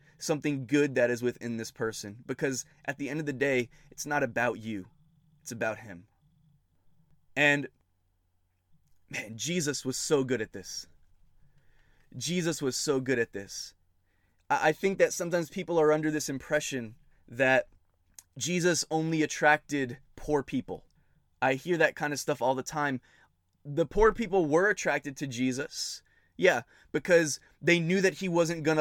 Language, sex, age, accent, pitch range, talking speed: English, male, 20-39, American, 140-185 Hz, 155 wpm